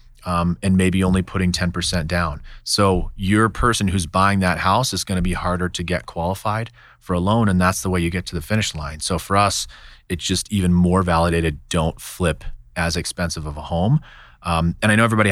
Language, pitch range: English, 85-105 Hz